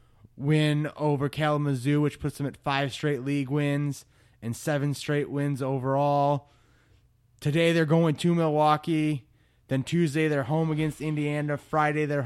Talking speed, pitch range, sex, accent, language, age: 140 wpm, 125-150 Hz, male, American, English, 20-39